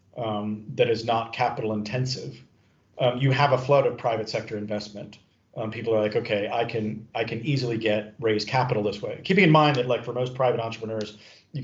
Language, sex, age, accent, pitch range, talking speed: English, male, 40-59, American, 110-130 Hz, 205 wpm